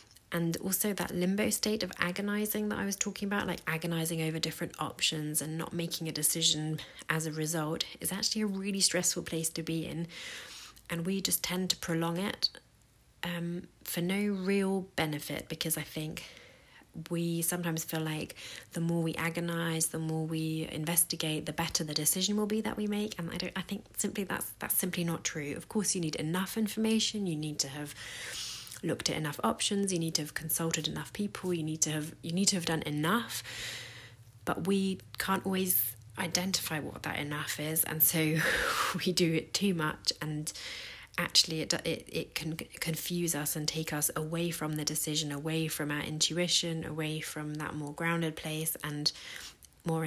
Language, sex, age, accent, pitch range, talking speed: English, female, 30-49, British, 155-180 Hz, 185 wpm